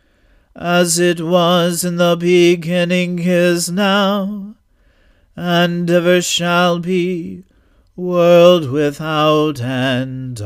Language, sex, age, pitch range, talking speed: English, male, 40-59, 125-180 Hz, 85 wpm